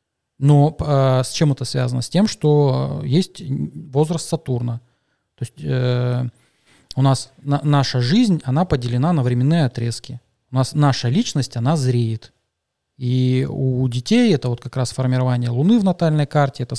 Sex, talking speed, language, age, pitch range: male, 155 wpm, Russian, 20-39, 125-140 Hz